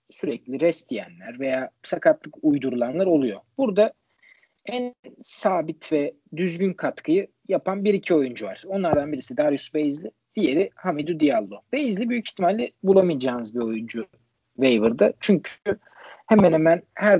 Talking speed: 125 wpm